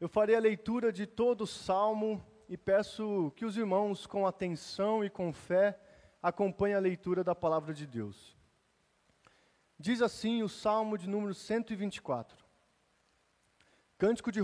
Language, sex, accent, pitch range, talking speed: Portuguese, male, Brazilian, 180-230 Hz, 140 wpm